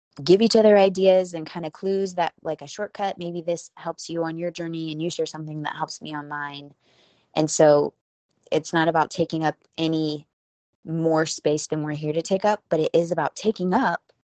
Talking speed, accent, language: 205 wpm, American, English